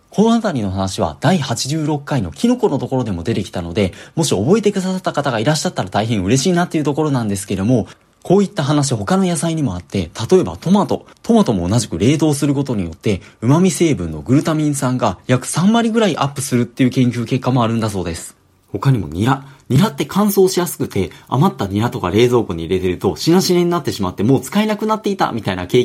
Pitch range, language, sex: 110-175 Hz, Japanese, male